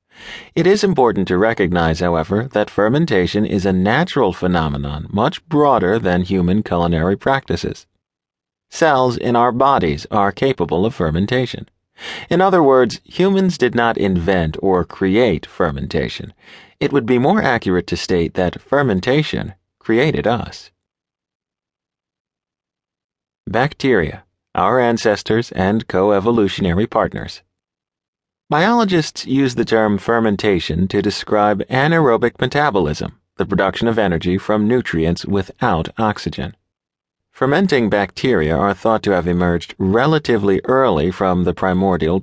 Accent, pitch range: American, 90-125 Hz